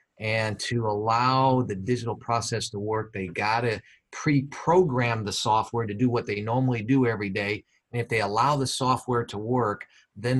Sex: male